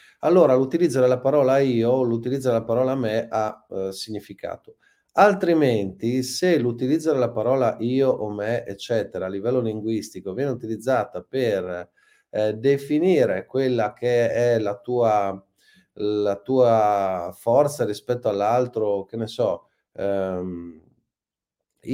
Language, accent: Italian, native